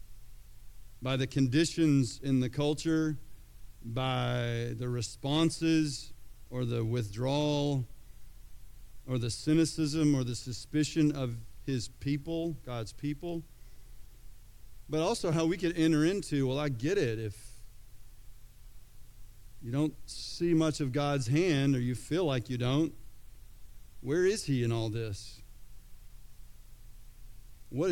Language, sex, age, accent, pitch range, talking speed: English, male, 50-69, American, 120-150 Hz, 120 wpm